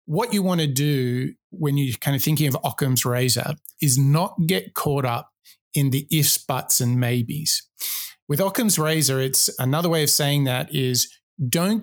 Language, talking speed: English, 180 wpm